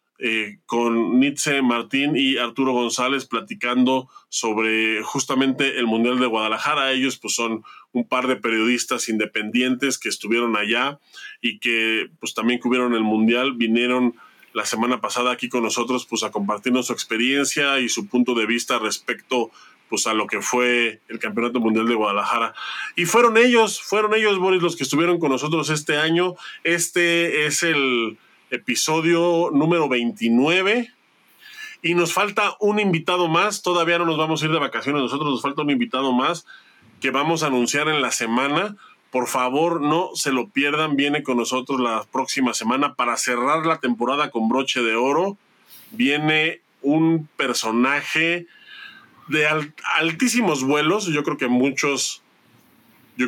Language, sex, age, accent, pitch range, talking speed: Spanish, male, 20-39, Mexican, 120-165 Hz, 155 wpm